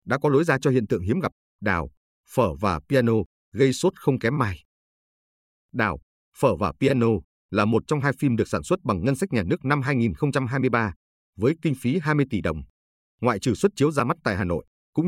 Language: Vietnamese